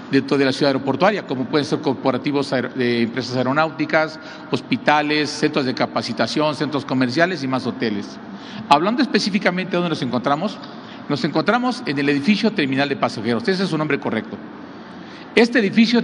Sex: male